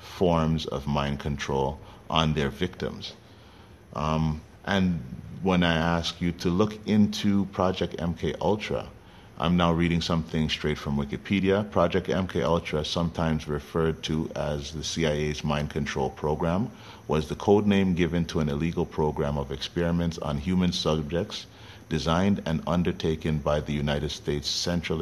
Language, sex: English, male